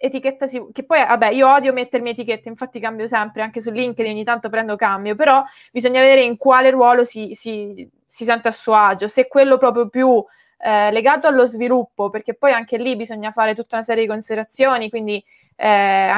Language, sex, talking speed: Italian, female, 200 wpm